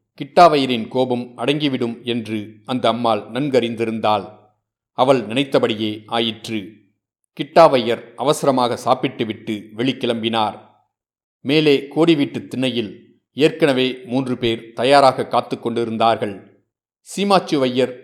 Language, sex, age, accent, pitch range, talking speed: Tamil, male, 40-59, native, 115-140 Hz, 80 wpm